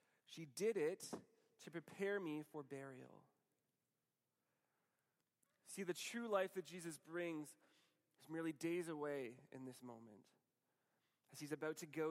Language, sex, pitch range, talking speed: English, male, 165-215 Hz, 135 wpm